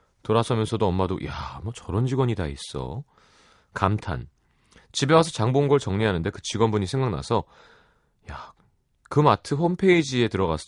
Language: Korean